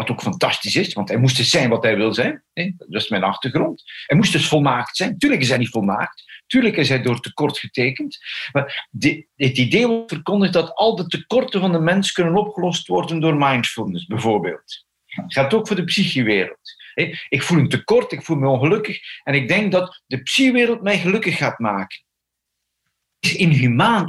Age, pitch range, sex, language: 50-69, 125-180 Hz, male, Dutch